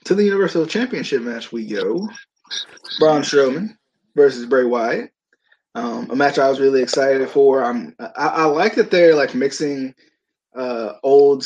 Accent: American